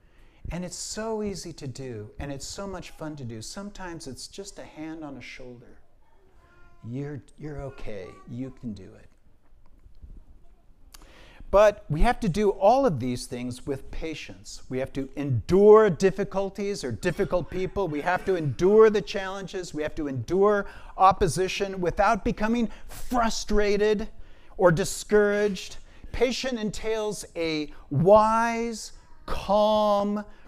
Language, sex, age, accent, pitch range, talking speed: English, male, 50-69, American, 140-215 Hz, 135 wpm